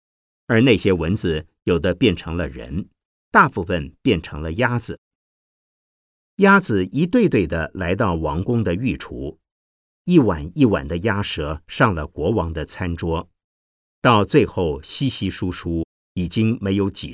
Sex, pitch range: male, 75-105 Hz